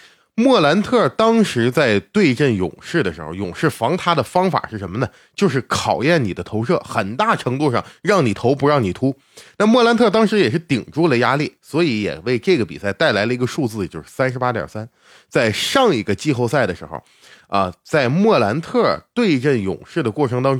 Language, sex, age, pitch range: Chinese, male, 20-39, 105-170 Hz